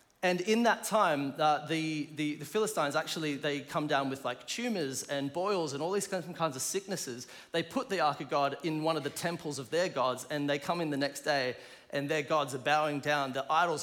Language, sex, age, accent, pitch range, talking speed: English, male, 30-49, Australian, 140-185 Hz, 230 wpm